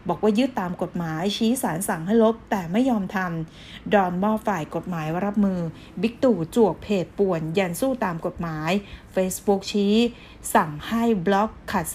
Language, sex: Thai, female